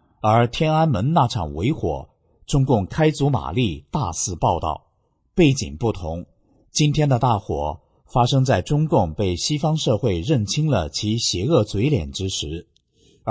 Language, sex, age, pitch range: Chinese, male, 50-69, 90-135 Hz